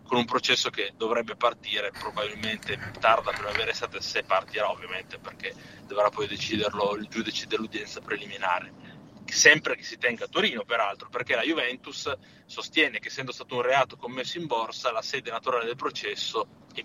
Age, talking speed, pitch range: 30-49, 165 wpm, 125-195 Hz